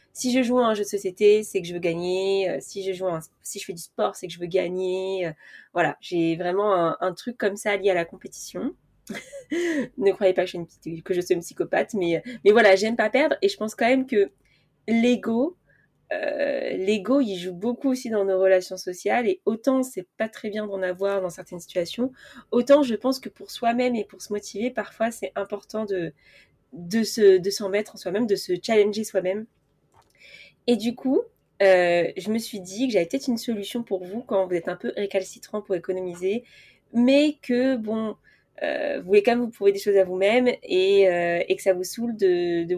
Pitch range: 185-245 Hz